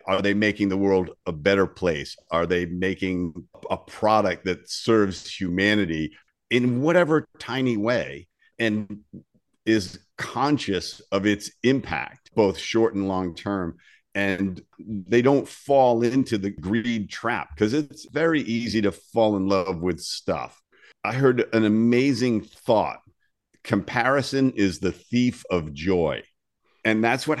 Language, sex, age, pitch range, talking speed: English, male, 50-69, 100-130 Hz, 140 wpm